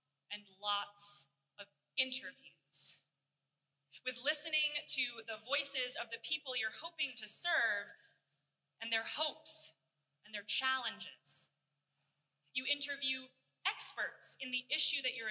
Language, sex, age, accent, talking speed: English, female, 20-39, American, 120 wpm